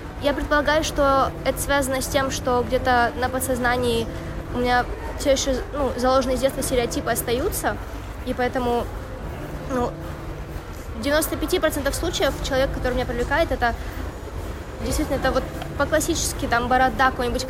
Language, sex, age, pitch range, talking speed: Russian, female, 20-39, 240-270 Hz, 135 wpm